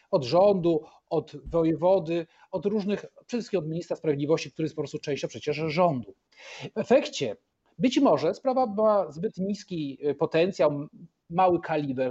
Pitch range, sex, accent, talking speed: 155-220 Hz, male, native, 140 wpm